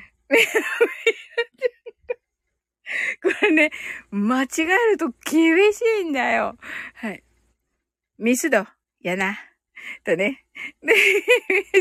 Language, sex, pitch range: Japanese, female, 250-410 Hz